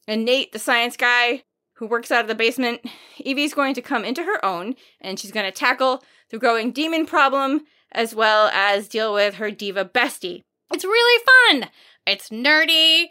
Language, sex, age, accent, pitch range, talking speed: English, female, 20-39, American, 205-280 Hz, 185 wpm